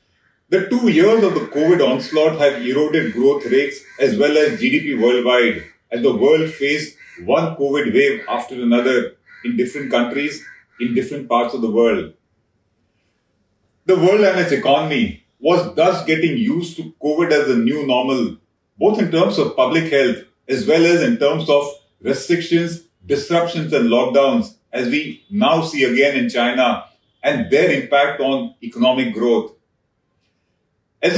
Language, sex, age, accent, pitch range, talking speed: English, male, 40-59, Indian, 125-185 Hz, 150 wpm